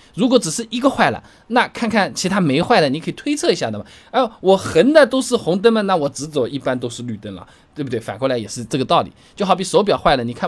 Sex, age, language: male, 20-39, Chinese